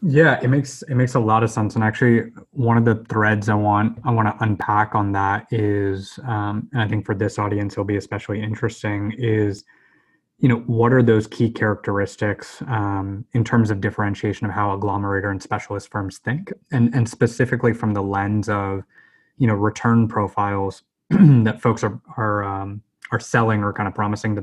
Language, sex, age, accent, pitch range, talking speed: English, male, 20-39, American, 105-120 Hz, 190 wpm